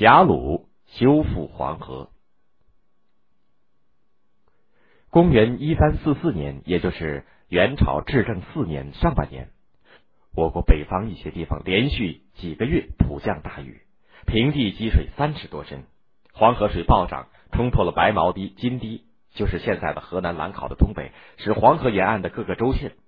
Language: Chinese